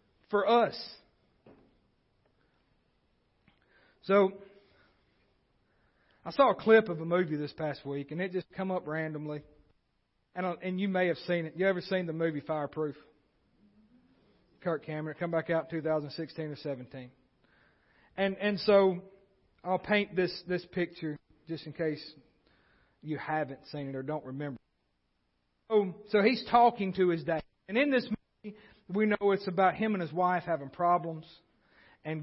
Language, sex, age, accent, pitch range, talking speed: English, male, 40-59, American, 160-215 Hz, 155 wpm